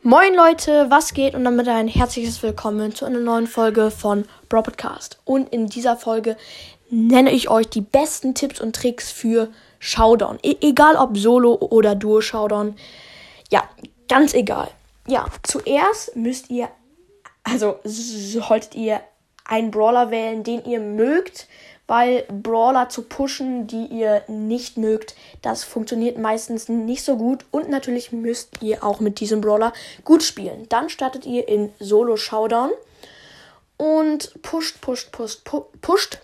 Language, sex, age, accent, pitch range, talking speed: German, female, 10-29, German, 225-275 Hz, 140 wpm